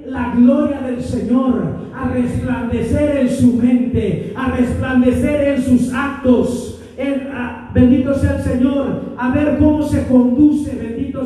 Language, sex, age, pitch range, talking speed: Spanish, male, 40-59, 225-265 Hz, 140 wpm